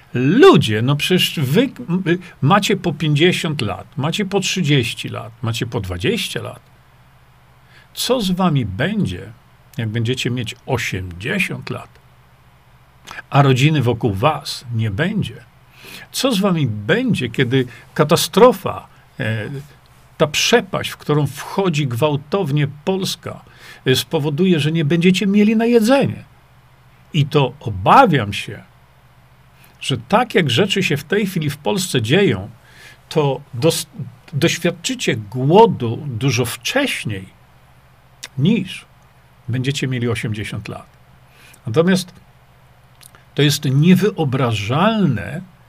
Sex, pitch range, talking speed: male, 120-180 Hz, 105 wpm